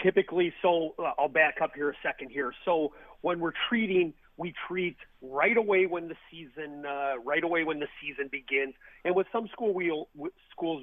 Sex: male